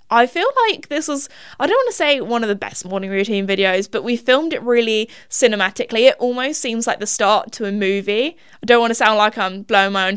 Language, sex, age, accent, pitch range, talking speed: English, female, 20-39, British, 200-275 Hz, 250 wpm